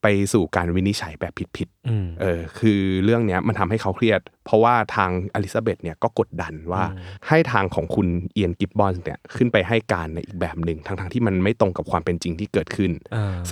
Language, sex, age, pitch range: Thai, male, 20-39, 90-110 Hz